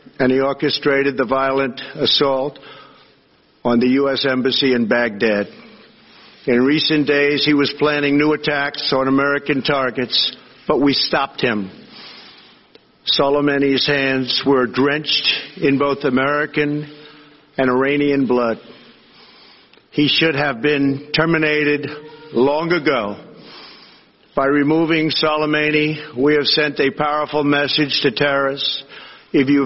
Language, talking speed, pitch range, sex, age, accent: English, 115 wpm, 135-145 Hz, male, 50-69, American